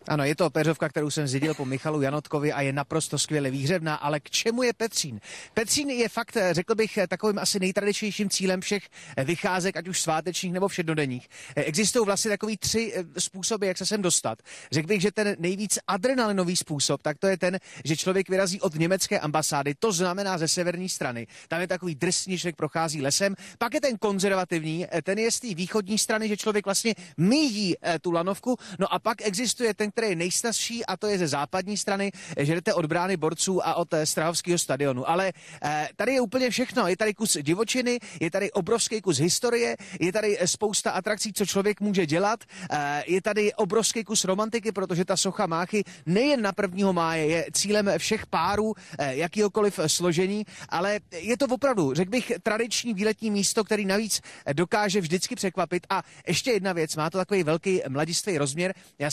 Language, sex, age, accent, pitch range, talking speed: Czech, male, 30-49, native, 165-215 Hz, 180 wpm